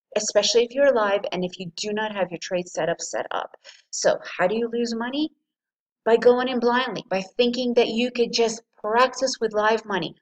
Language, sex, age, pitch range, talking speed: English, female, 30-49, 195-245 Hz, 205 wpm